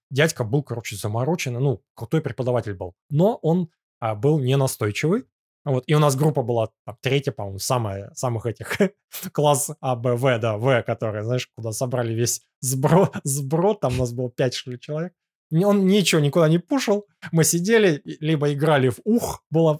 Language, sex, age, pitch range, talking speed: Russian, male, 20-39, 125-160 Hz, 175 wpm